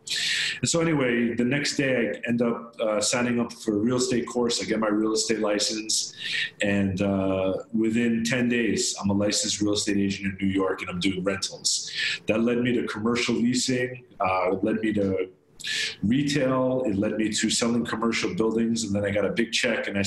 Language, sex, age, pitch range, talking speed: English, male, 40-59, 105-120 Hz, 205 wpm